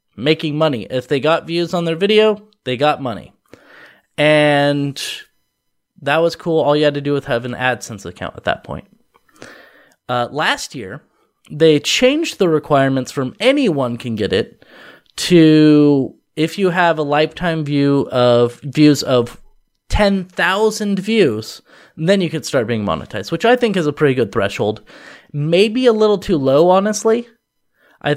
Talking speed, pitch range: 160 wpm, 135-180 Hz